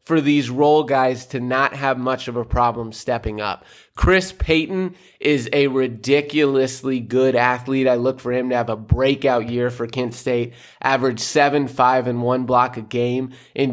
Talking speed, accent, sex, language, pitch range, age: 180 wpm, American, male, English, 125-145 Hz, 20-39